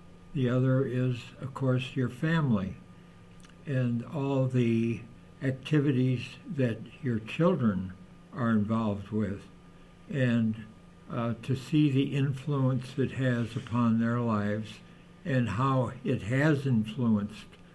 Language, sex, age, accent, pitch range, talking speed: English, male, 60-79, American, 105-130 Hz, 110 wpm